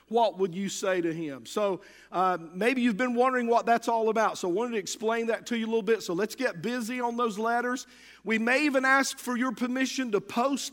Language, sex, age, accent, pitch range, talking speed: English, male, 50-69, American, 195-255 Hz, 240 wpm